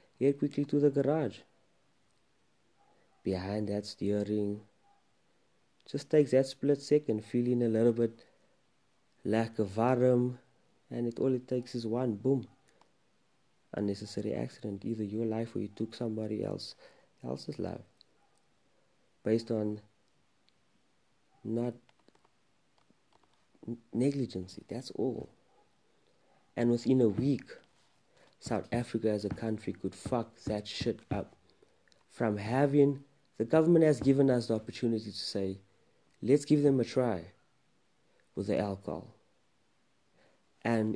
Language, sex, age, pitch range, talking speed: English, male, 30-49, 105-130 Hz, 115 wpm